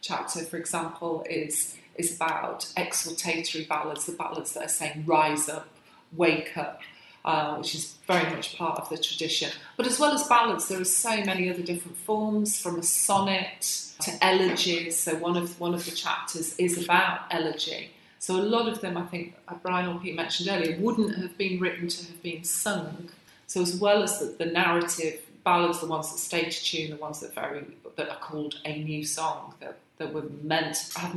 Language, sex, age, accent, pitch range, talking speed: English, female, 30-49, British, 155-175 Hz, 200 wpm